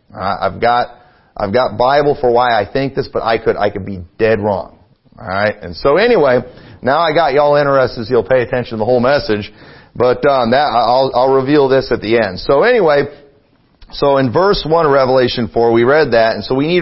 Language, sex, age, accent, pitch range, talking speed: English, male, 40-59, American, 120-160 Hz, 225 wpm